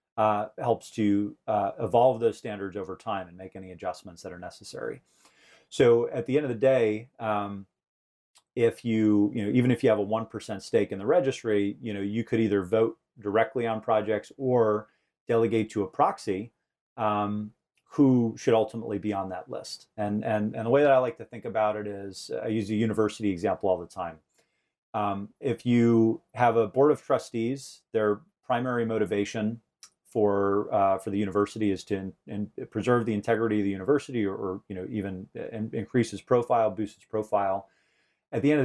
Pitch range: 100-115 Hz